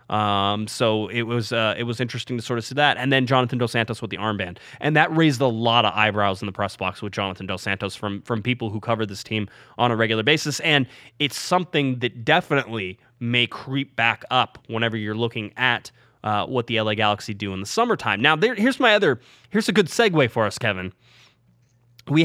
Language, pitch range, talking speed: English, 110-140 Hz, 220 wpm